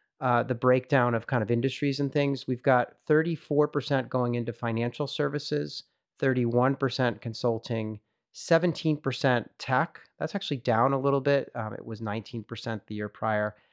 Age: 30-49